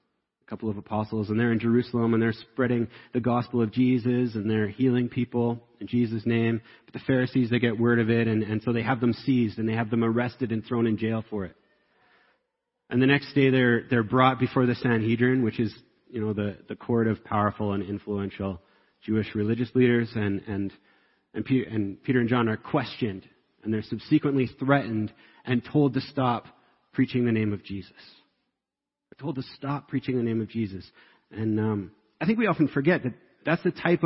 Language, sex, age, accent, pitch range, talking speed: English, male, 30-49, American, 110-135 Hz, 200 wpm